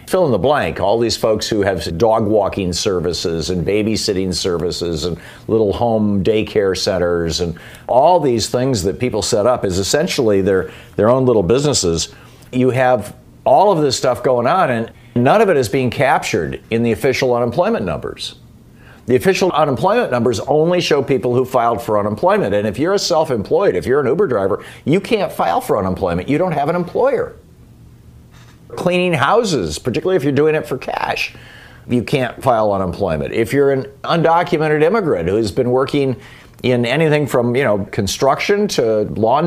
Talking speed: 175 wpm